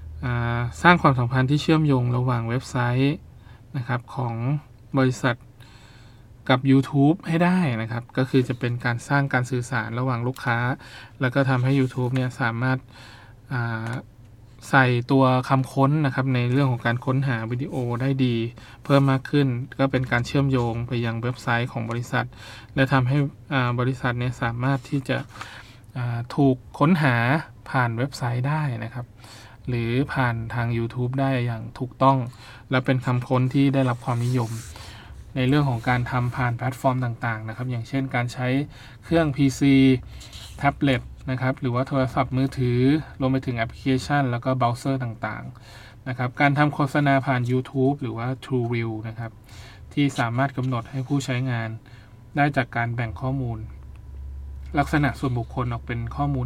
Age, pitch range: 20-39, 115-135 Hz